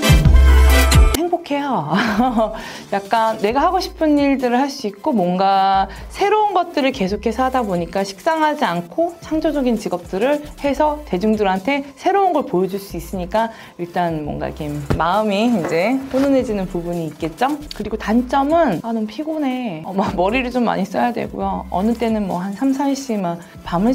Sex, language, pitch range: female, Korean, 160-235 Hz